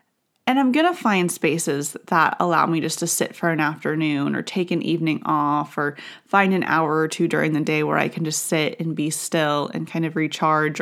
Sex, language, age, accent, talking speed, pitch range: female, English, 30-49, American, 225 wpm, 165-220 Hz